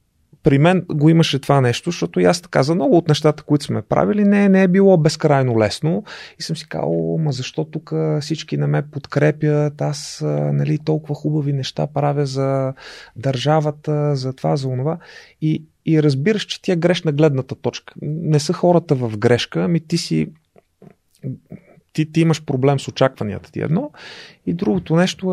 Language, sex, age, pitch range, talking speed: Bulgarian, male, 30-49, 125-160 Hz, 175 wpm